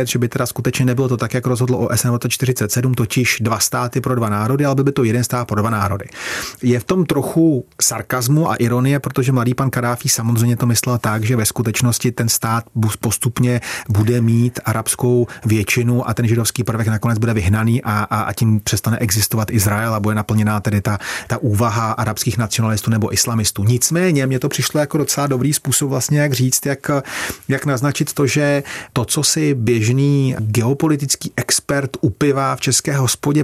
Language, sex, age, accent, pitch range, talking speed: Czech, male, 30-49, native, 115-135 Hz, 180 wpm